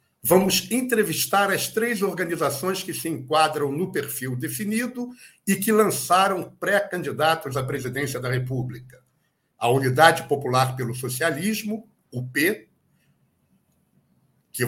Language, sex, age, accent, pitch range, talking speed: Portuguese, male, 60-79, Brazilian, 135-190 Hz, 110 wpm